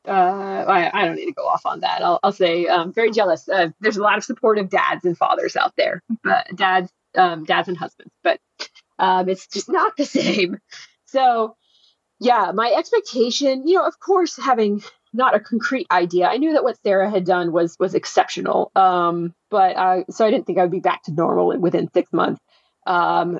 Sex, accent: female, American